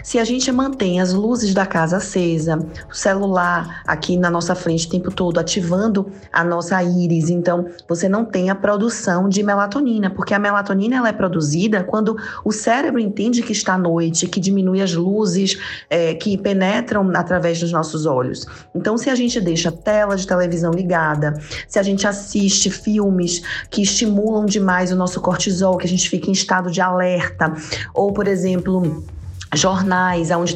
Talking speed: 170 wpm